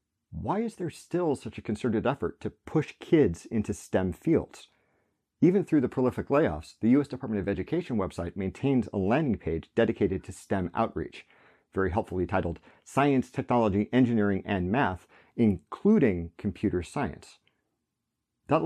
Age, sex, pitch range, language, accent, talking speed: 40-59, male, 90-125 Hz, English, American, 145 wpm